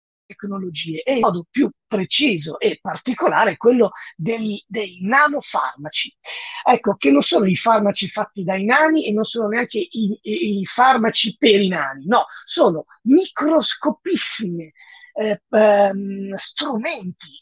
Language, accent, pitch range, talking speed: Italian, native, 190-270 Hz, 125 wpm